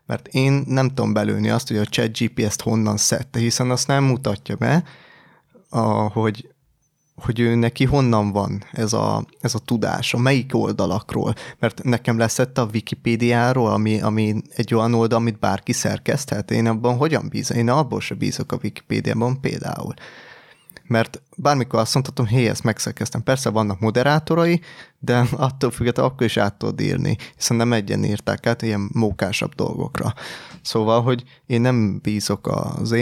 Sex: male